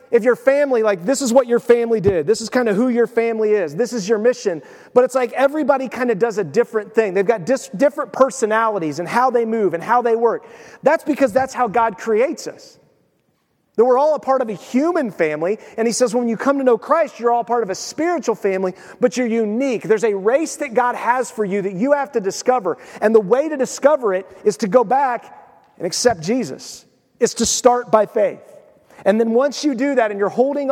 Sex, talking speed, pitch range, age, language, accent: male, 230 wpm, 220-265 Hz, 30-49, English, American